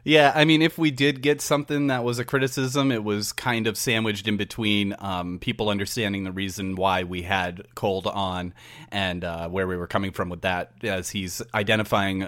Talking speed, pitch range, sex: 200 wpm, 95-115 Hz, male